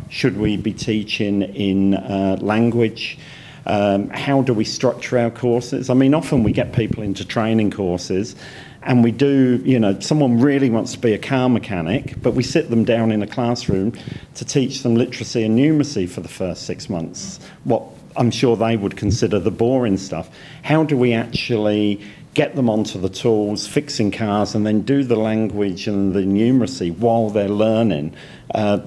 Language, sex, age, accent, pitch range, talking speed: English, male, 50-69, British, 100-130 Hz, 180 wpm